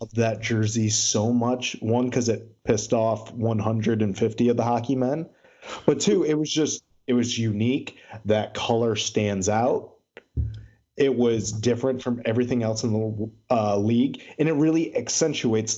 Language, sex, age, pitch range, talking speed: English, male, 30-49, 110-125 Hz, 150 wpm